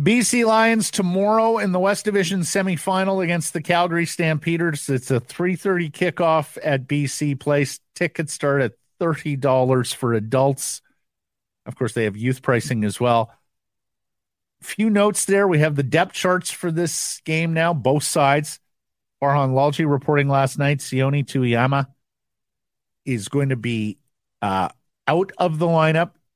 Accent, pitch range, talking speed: American, 125-160 Hz, 145 wpm